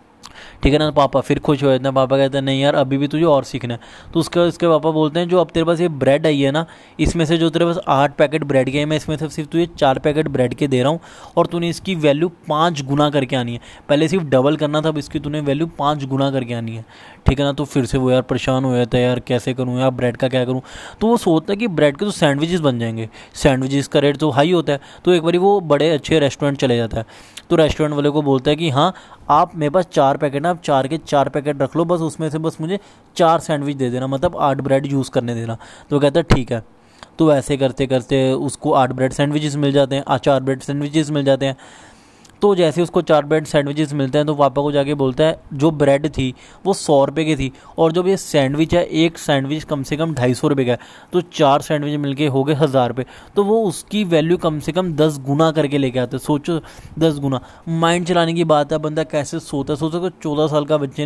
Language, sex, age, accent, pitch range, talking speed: Hindi, male, 10-29, native, 135-160 Hz, 255 wpm